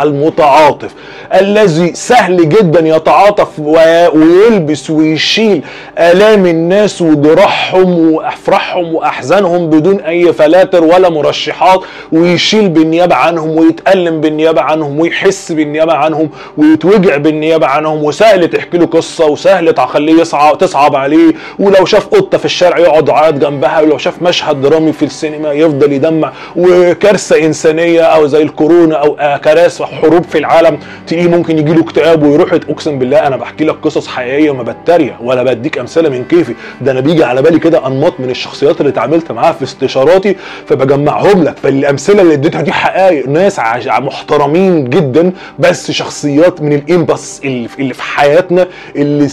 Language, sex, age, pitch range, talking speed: Arabic, male, 20-39, 150-180 Hz, 140 wpm